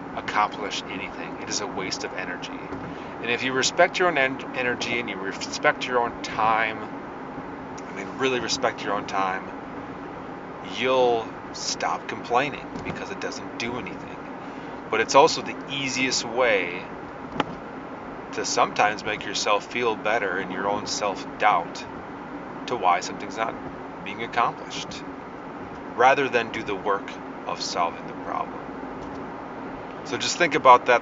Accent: American